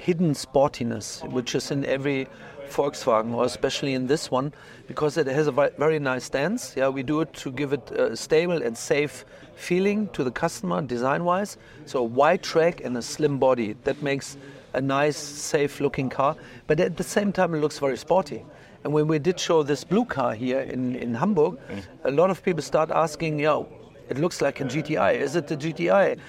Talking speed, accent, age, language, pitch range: 200 wpm, German, 40-59, Swedish, 125-155 Hz